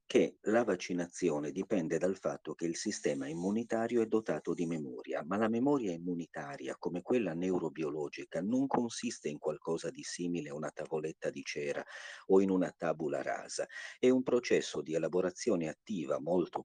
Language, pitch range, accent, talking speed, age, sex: Italian, 85-115 Hz, native, 160 wpm, 50-69, male